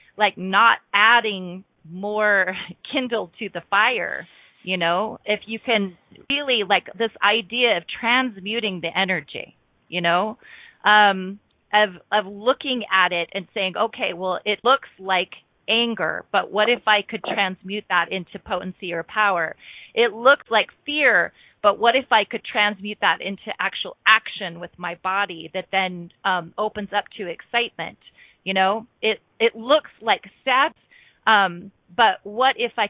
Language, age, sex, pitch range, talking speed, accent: English, 30-49, female, 190-235 Hz, 155 wpm, American